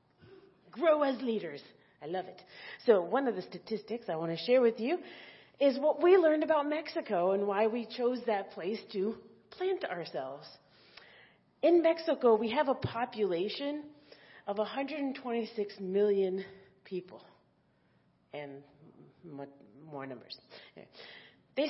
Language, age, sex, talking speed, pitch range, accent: English, 40-59, female, 125 wpm, 190-260 Hz, American